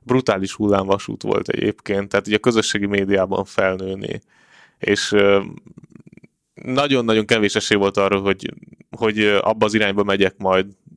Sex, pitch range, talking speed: male, 100-115 Hz, 130 wpm